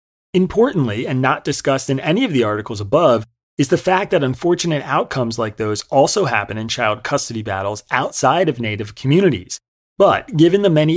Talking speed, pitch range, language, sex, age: 175 wpm, 110-145 Hz, English, male, 30-49